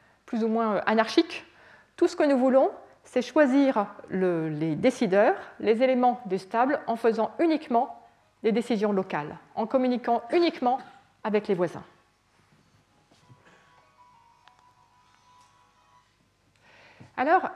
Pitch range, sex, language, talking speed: 220-300 Hz, female, French, 105 wpm